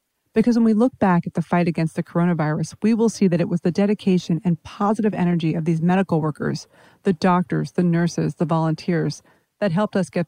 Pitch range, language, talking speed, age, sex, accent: 165-200 Hz, English, 210 wpm, 40-59, female, American